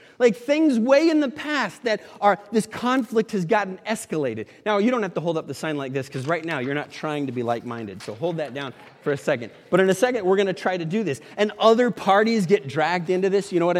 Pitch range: 175-240 Hz